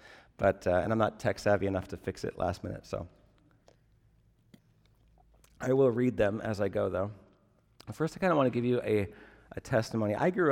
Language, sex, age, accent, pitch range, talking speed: English, male, 40-59, American, 105-125 Hz, 195 wpm